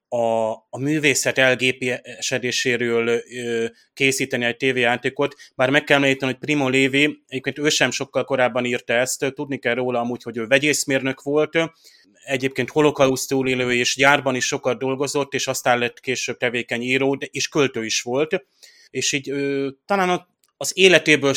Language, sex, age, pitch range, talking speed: Hungarian, male, 30-49, 120-135 Hz, 155 wpm